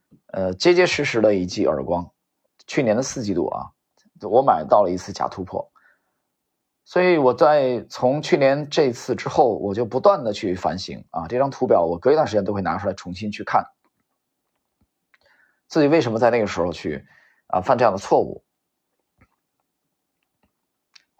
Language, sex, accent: Chinese, male, native